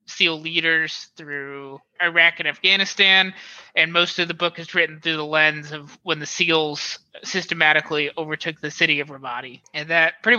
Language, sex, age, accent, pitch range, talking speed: English, male, 20-39, American, 155-175 Hz, 170 wpm